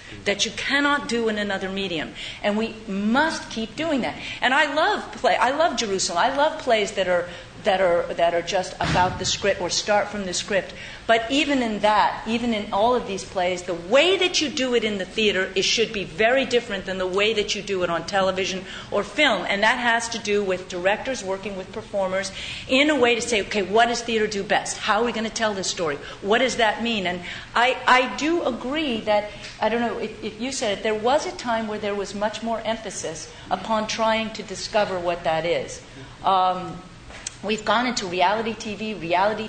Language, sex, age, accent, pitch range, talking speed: English, female, 50-69, American, 190-235 Hz, 215 wpm